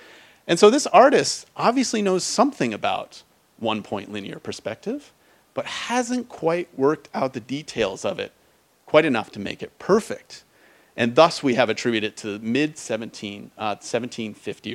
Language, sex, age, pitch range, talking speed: English, male, 40-59, 115-165 Hz, 155 wpm